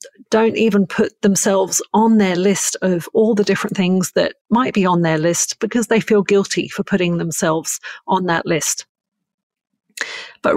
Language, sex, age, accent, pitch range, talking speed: English, female, 40-59, British, 175-220 Hz, 165 wpm